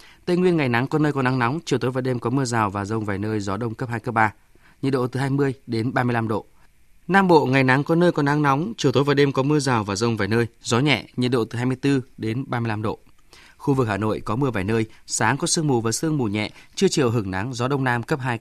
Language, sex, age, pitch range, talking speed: Vietnamese, male, 20-39, 120-155 Hz, 285 wpm